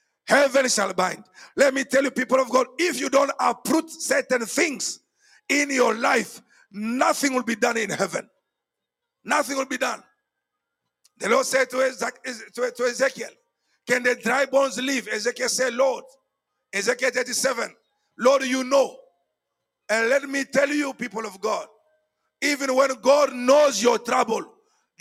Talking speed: 155 wpm